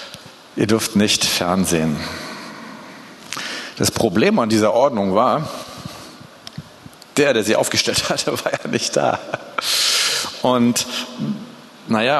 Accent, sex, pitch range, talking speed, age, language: German, male, 110-140 Hz, 105 wpm, 40-59, German